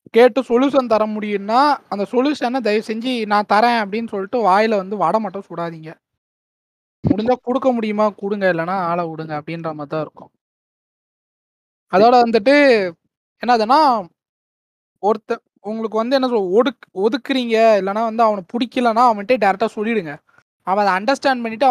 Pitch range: 200-250 Hz